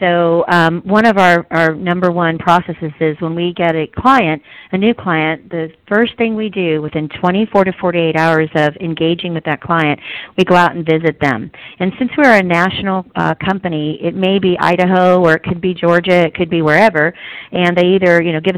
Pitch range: 160-190 Hz